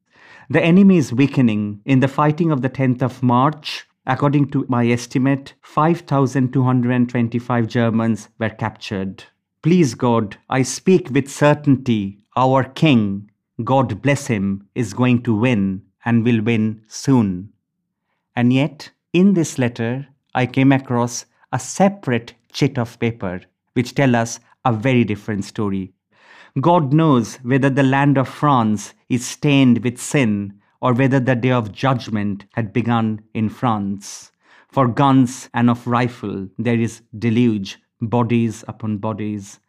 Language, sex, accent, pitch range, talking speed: English, male, Indian, 110-130 Hz, 140 wpm